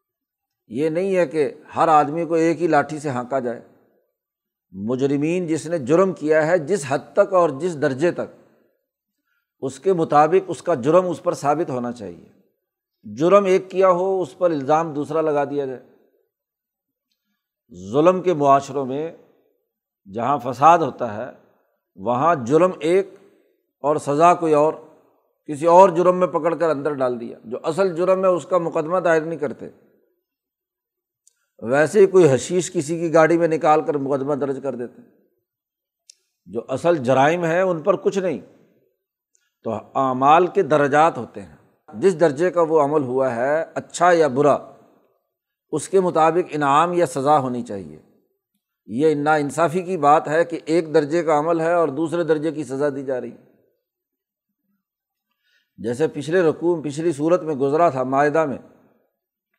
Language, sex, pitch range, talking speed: Urdu, male, 145-185 Hz, 160 wpm